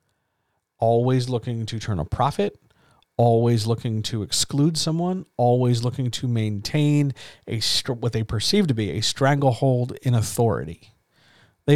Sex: male